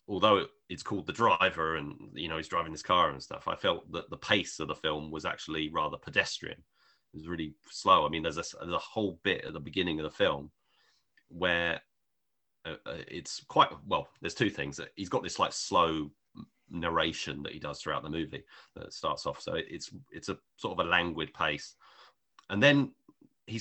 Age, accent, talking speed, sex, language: 30-49, British, 200 wpm, male, English